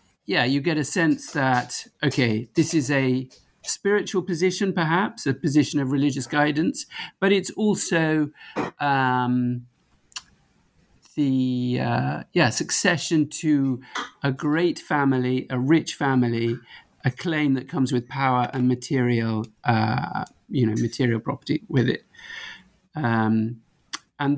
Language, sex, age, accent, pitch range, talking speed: English, male, 50-69, British, 125-155 Hz, 125 wpm